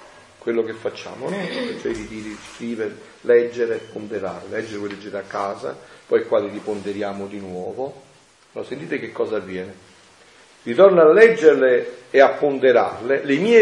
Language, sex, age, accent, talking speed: Italian, male, 40-59, native, 150 wpm